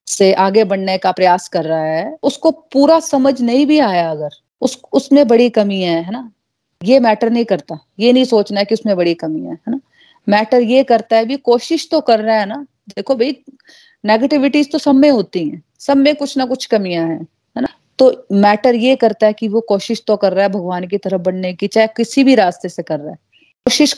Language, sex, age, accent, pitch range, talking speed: Hindi, female, 30-49, native, 185-245 Hz, 230 wpm